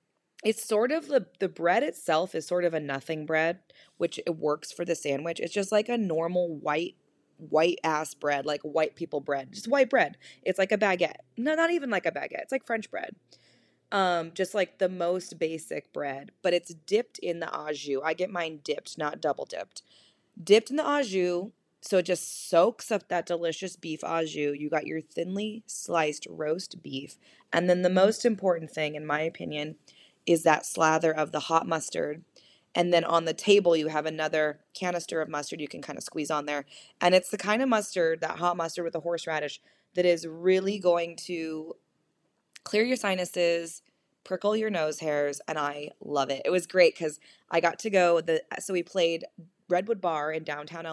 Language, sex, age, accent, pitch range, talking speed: English, female, 20-39, American, 155-190 Hz, 200 wpm